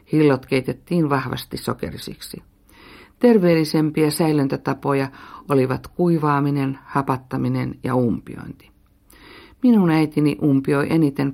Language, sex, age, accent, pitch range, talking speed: Finnish, female, 50-69, native, 130-160 Hz, 80 wpm